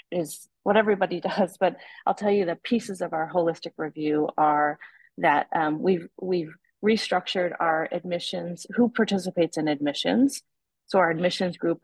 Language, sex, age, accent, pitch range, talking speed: English, female, 30-49, American, 160-195 Hz, 150 wpm